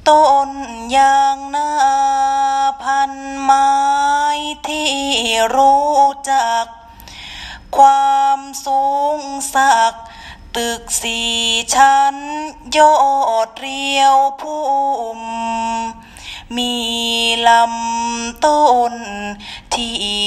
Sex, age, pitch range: female, 20-39, 230-285 Hz